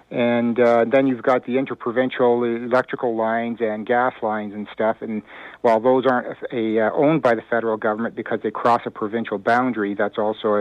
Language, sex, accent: English, male, American